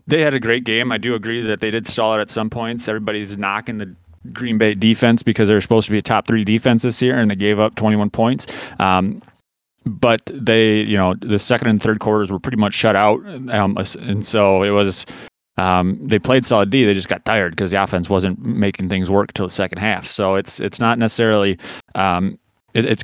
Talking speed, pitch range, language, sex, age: 225 wpm, 100-115 Hz, English, male, 30-49